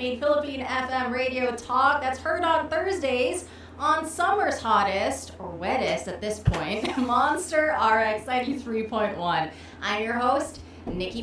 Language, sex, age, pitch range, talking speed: English, female, 30-49, 190-275 Hz, 125 wpm